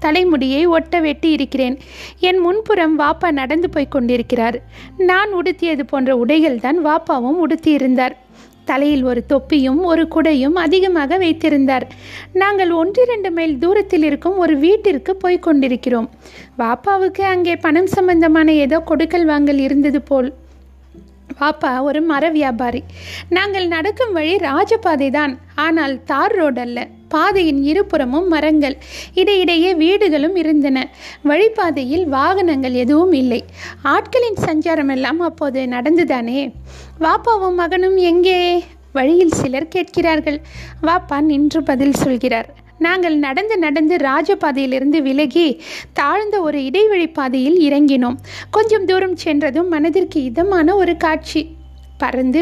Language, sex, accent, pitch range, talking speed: Tamil, female, native, 280-355 Hz, 110 wpm